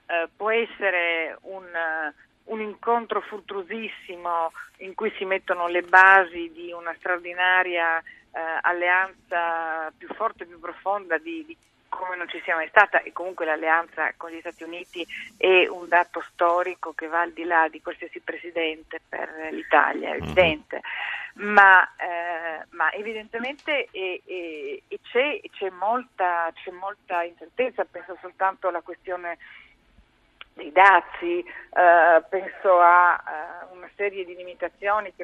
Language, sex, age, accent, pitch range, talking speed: Italian, female, 40-59, native, 170-210 Hz, 140 wpm